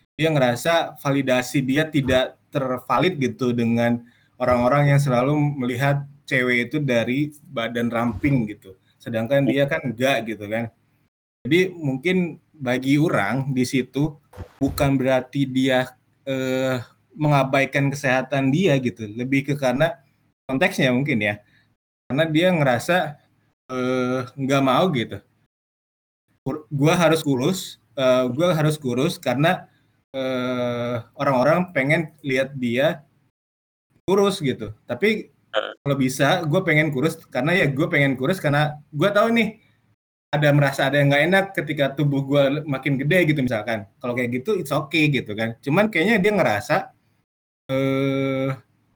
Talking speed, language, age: 130 wpm, Indonesian, 20-39